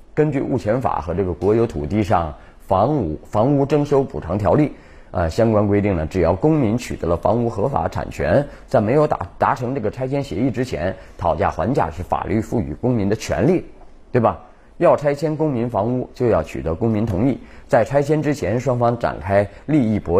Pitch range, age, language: 95-135 Hz, 30-49, Chinese